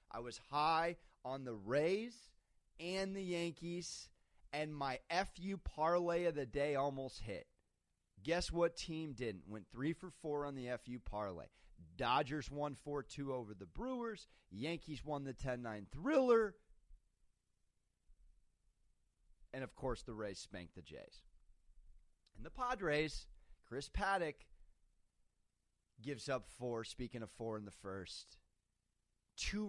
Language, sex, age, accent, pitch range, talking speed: English, male, 30-49, American, 95-140 Hz, 130 wpm